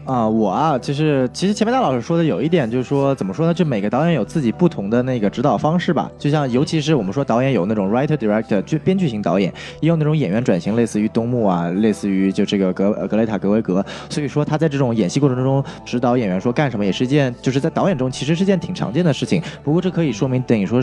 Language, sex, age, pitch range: Chinese, male, 20-39, 115-160 Hz